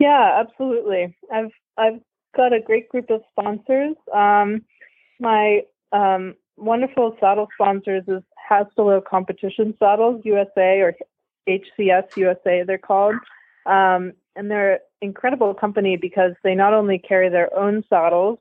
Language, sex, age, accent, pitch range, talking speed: English, female, 20-39, American, 175-210 Hz, 125 wpm